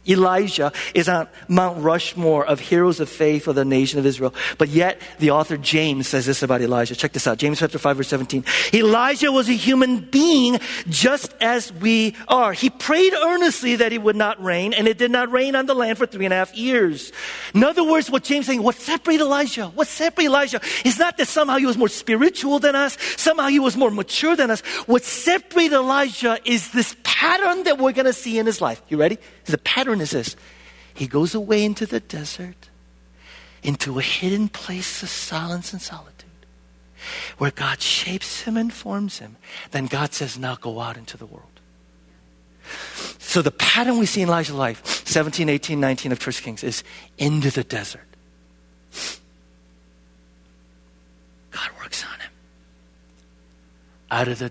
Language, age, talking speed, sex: English, 40-59, 185 wpm, male